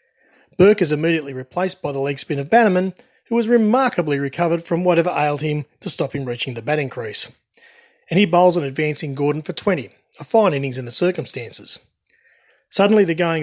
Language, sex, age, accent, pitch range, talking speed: English, male, 30-49, Australian, 145-200 Hz, 190 wpm